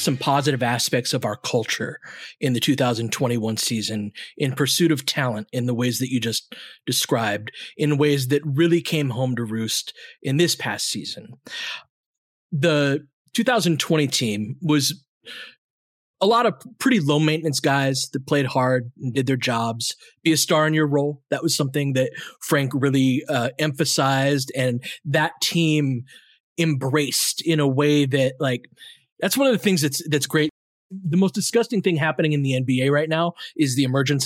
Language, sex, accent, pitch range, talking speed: English, male, American, 130-165 Hz, 165 wpm